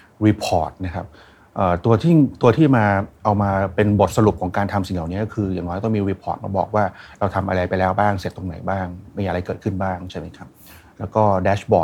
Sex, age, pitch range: male, 30-49, 95-110 Hz